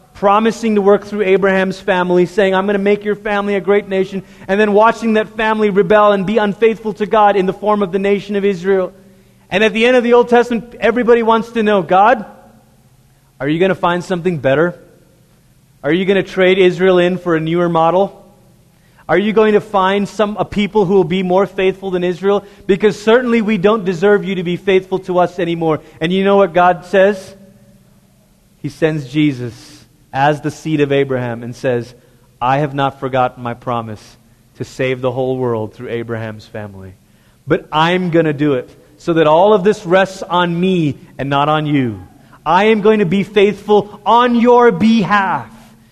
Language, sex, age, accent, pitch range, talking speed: English, male, 30-49, American, 145-205 Hz, 195 wpm